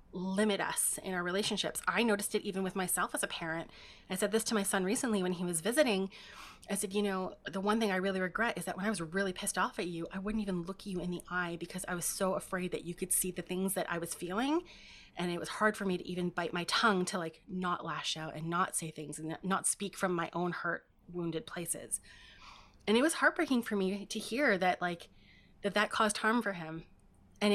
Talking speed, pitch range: 250 wpm, 180-225 Hz